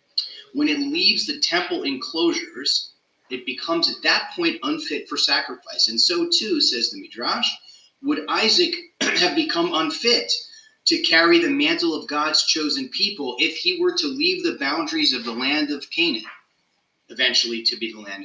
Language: English